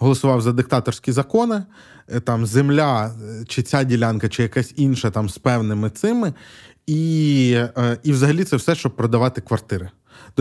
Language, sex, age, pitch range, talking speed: Ukrainian, male, 20-39, 110-140 Hz, 145 wpm